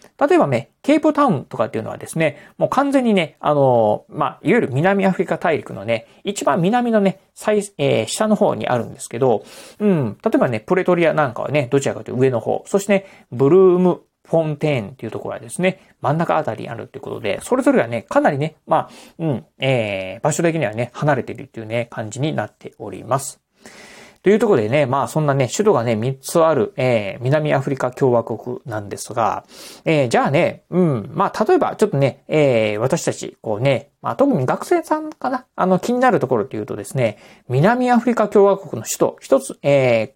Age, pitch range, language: 40-59, 130-200 Hz, Japanese